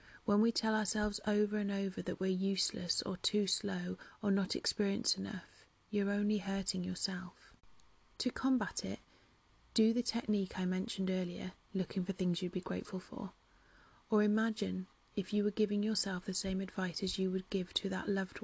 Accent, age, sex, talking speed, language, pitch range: British, 30-49, female, 175 wpm, English, 185-210 Hz